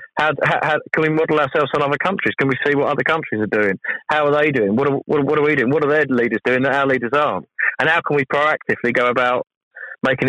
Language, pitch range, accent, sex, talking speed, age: English, 120-150 Hz, British, male, 240 wpm, 30-49